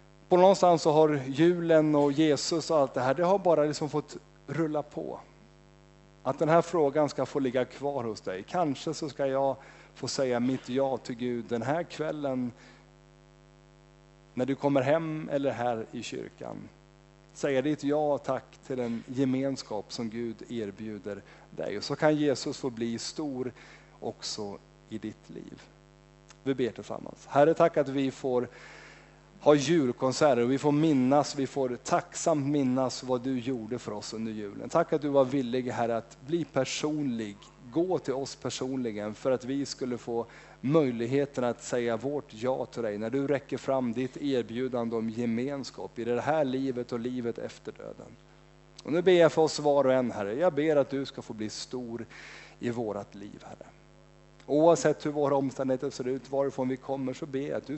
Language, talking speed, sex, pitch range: Swedish, 180 wpm, male, 125-155 Hz